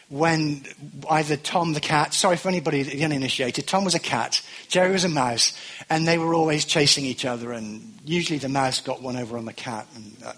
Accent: British